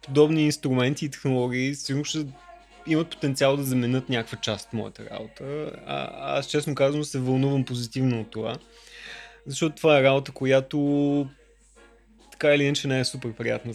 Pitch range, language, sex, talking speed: 115-140 Hz, Bulgarian, male, 155 wpm